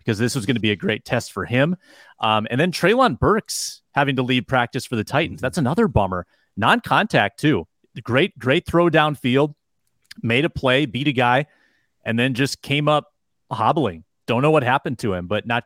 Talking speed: 205 wpm